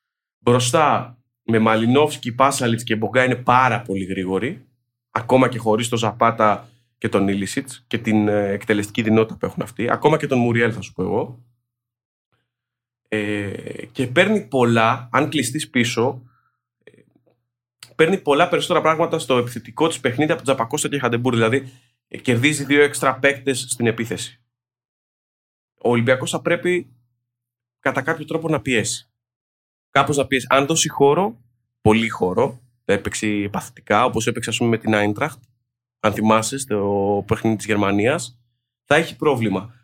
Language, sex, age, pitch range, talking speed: Greek, male, 30-49, 115-135 Hz, 140 wpm